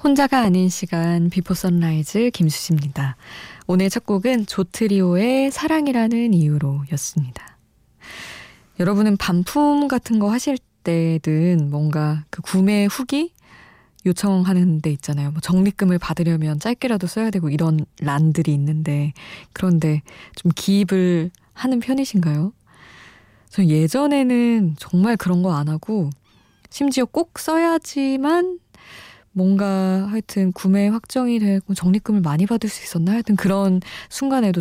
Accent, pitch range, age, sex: native, 165-220 Hz, 20-39, female